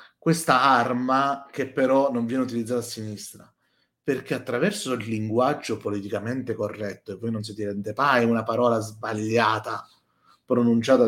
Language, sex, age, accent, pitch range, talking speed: Italian, male, 30-49, native, 110-130 Hz, 135 wpm